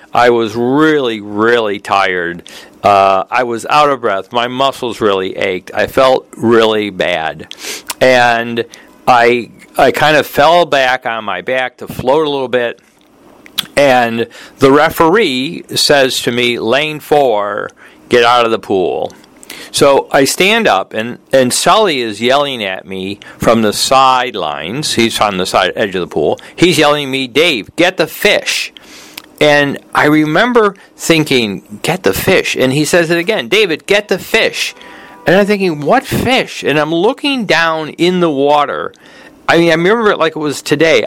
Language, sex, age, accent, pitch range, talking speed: English, male, 50-69, American, 120-180 Hz, 165 wpm